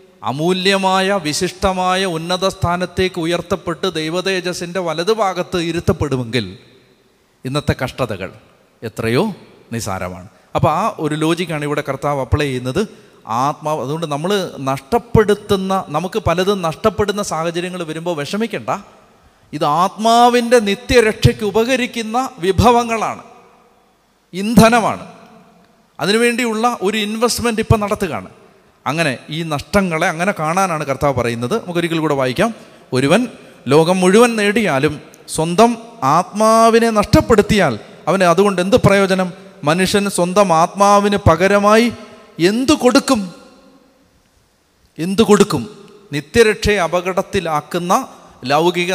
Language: Malayalam